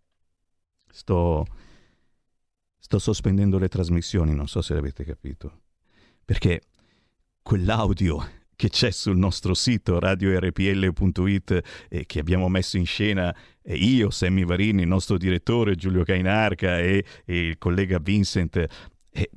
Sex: male